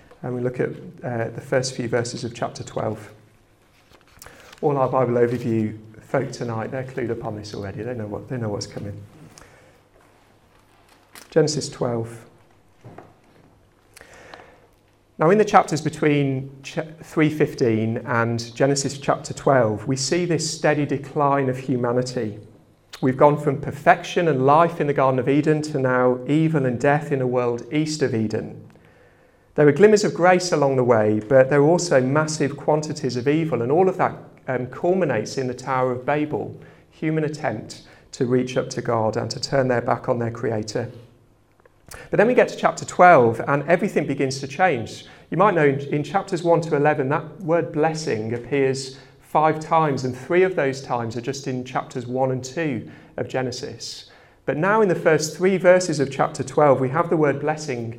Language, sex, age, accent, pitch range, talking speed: English, male, 40-59, British, 120-150 Hz, 170 wpm